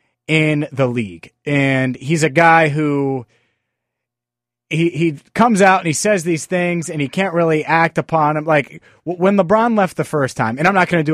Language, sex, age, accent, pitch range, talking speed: English, male, 30-49, American, 130-170 Hz, 200 wpm